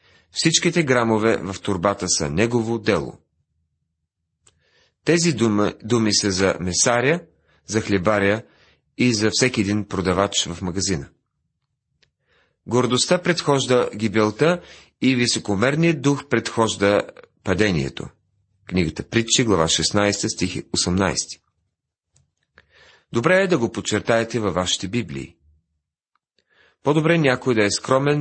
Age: 40-59